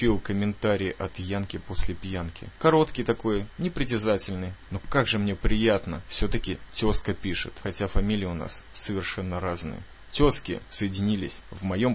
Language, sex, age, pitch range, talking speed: Russian, male, 20-39, 100-125 Hz, 135 wpm